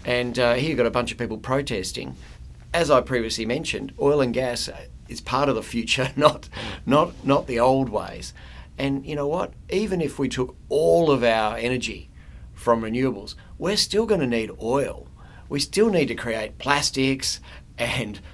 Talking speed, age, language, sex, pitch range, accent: 180 wpm, 40-59, English, male, 100-125 Hz, Australian